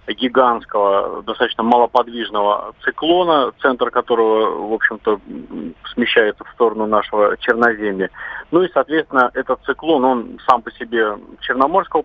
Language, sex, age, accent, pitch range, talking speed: Russian, male, 30-49, native, 115-135 Hz, 115 wpm